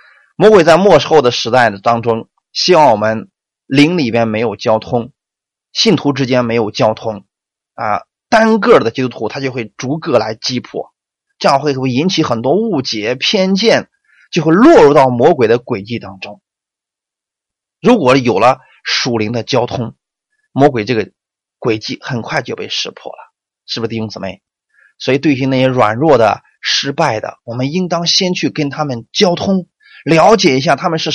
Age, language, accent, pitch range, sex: 20-39, Chinese, native, 120-170 Hz, male